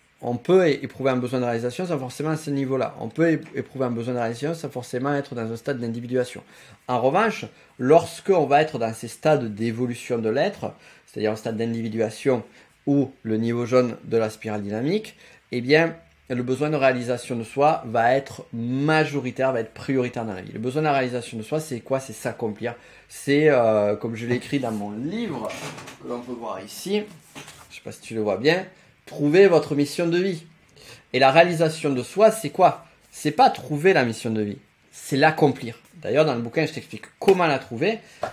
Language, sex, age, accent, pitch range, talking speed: French, male, 30-49, French, 120-160 Hz, 205 wpm